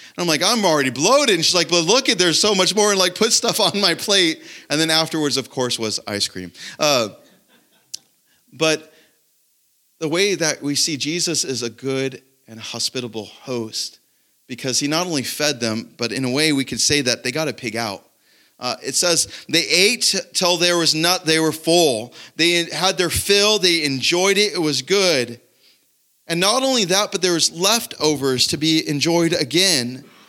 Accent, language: American, English